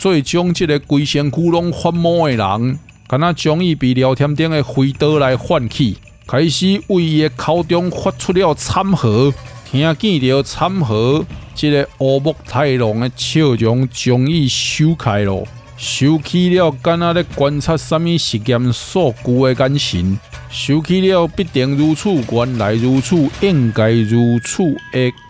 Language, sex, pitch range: Chinese, male, 125-170 Hz